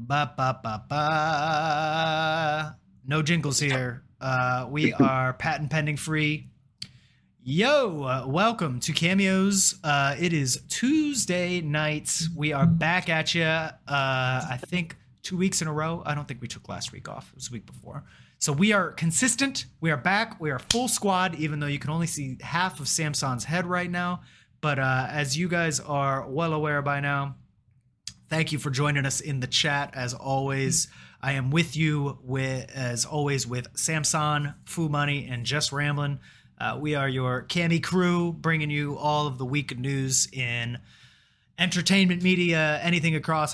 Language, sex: English, male